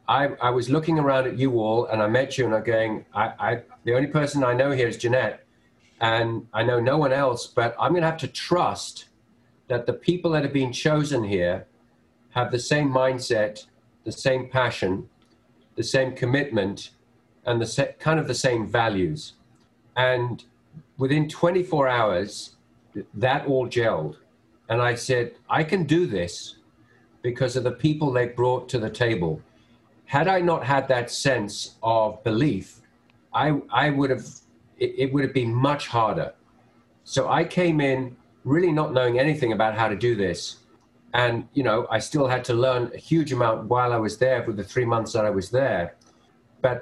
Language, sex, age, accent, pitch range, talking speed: English, male, 50-69, British, 115-140 Hz, 180 wpm